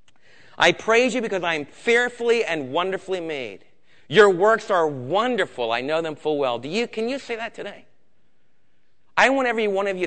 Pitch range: 160-210 Hz